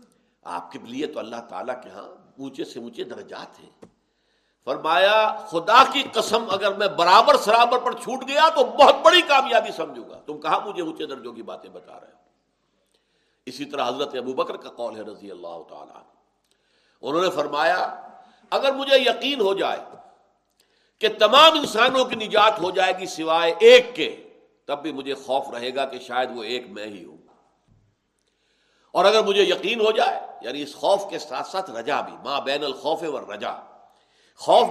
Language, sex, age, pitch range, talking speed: Urdu, male, 60-79, 170-280 Hz, 180 wpm